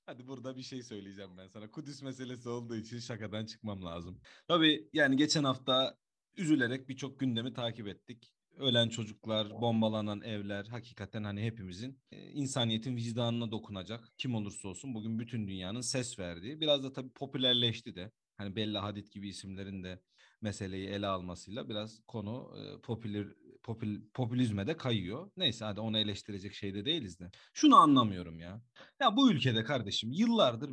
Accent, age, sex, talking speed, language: native, 40-59, male, 150 wpm, Turkish